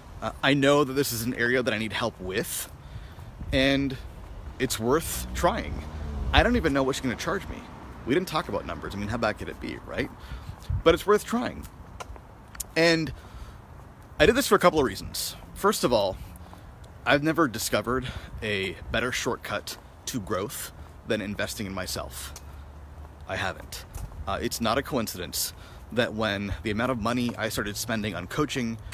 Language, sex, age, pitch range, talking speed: English, male, 30-49, 90-130 Hz, 175 wpm